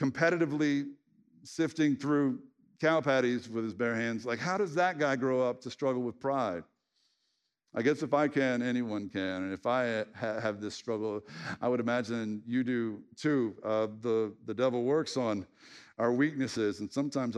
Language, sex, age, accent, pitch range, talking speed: English, male, 50-69, American, 110-135 Hz, 175 wpm